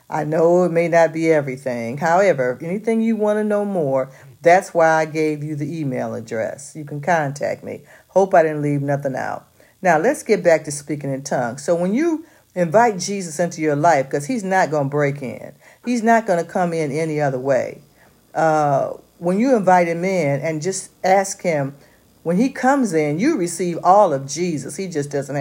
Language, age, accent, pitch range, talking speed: English, 50-69, American, 150-205 Hz, 205 wpm